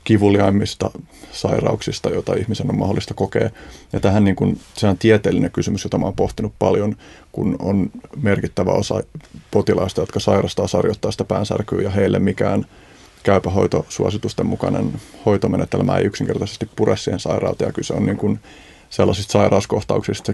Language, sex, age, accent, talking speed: Finnish, male, 30-49, native, 140 wpm